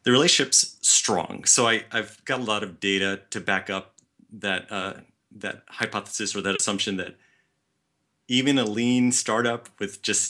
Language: English